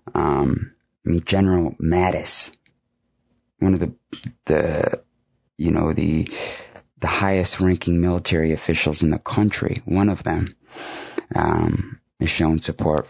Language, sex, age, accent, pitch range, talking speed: English, male, 30-49, American, 80-95 Hz, 115 wpm